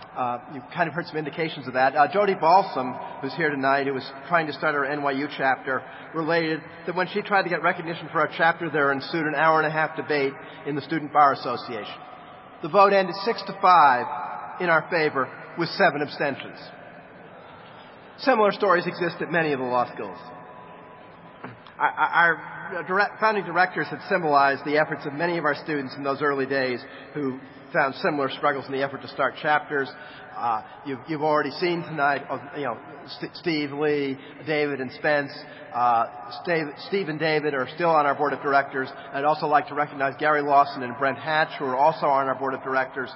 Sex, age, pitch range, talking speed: male, 40-59, 135-165 Hz, 195 wpm